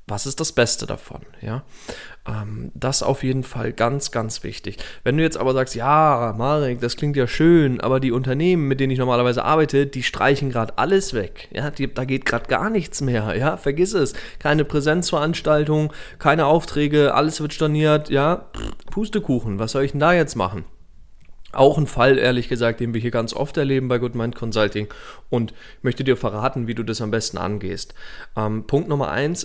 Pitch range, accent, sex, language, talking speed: 120-150 Hz, German, male, German, 190 wpm